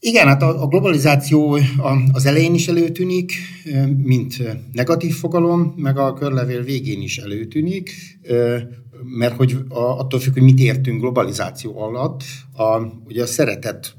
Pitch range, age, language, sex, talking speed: 105-135 Hz, 60-79, Hungarian, male, 135 wpm